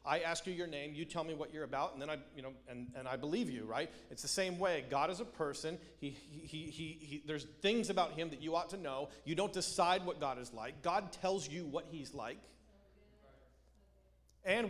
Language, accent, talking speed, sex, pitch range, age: English, American, 235 wpm, male, 135-180 Hz, 40-59